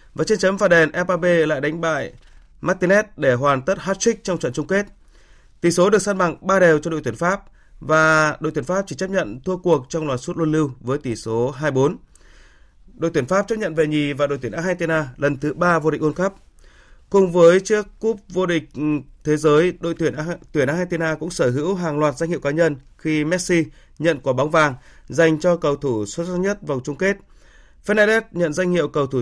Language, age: Vietnamese, 20-39